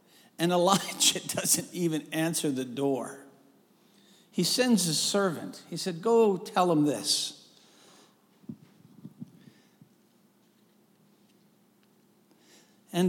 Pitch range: 170-225 Hz